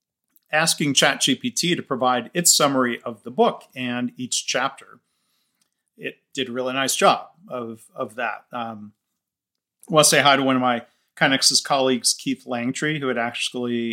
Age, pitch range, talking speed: 40-59, 120-140 Hz, 160 wpm